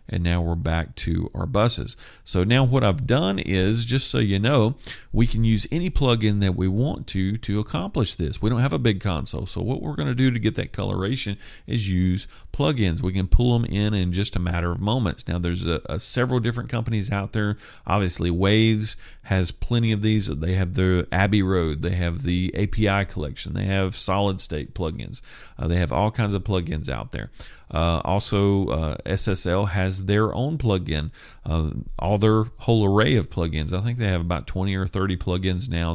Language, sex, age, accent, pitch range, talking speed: English, male, 40-59, American, 85-110 Hz, 205 wpm